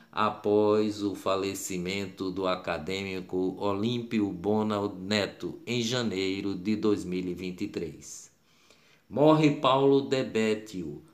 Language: Portuguese